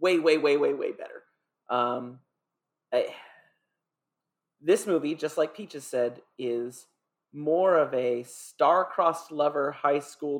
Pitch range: 140-200 Hz